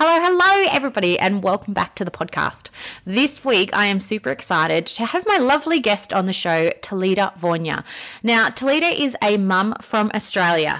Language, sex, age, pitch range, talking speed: English, female, 20-39, 170-230 Hz, 180 wpm